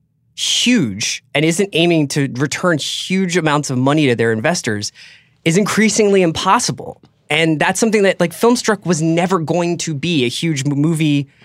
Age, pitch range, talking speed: 20-39, 120-160 Hz, 155 wpm